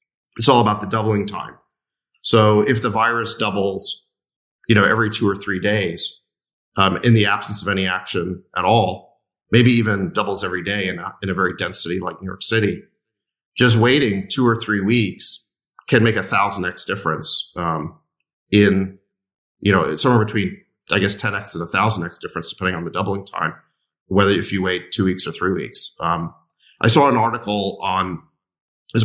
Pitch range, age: 95-115 Hz, 40-59